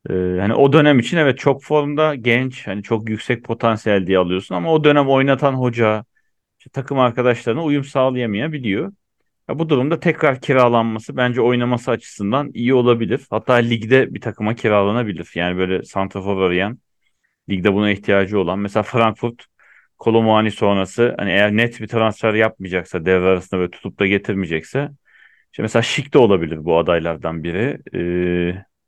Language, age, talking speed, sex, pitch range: Turkish, 40-59, 150 wpm, male, 95-130 Hz